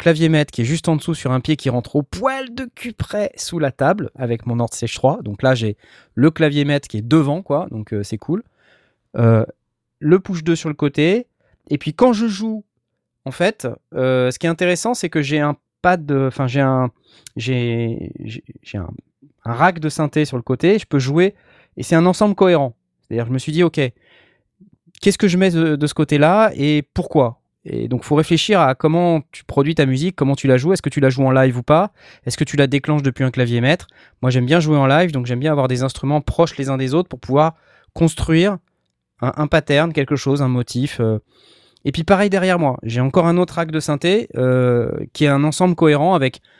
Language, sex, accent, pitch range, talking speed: French, male, French, 130-170 Hz, 230 wpm